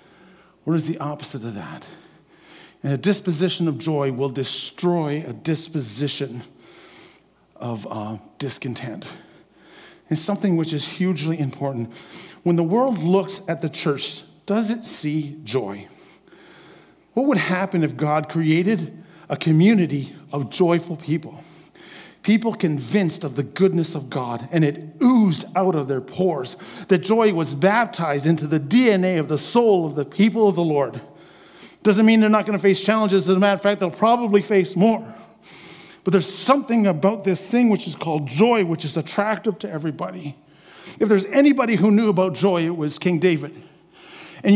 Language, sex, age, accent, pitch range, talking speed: English, male, 50-69, American, 160-210 Hz, 160 wpm